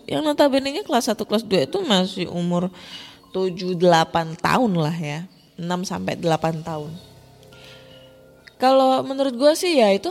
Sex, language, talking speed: female, Indonesian, 140 wpm